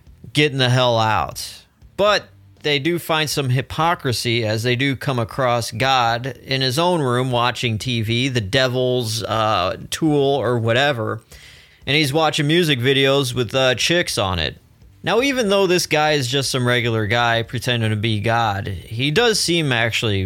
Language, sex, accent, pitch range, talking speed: English, male, American, 110-145 Hz, 165 wpm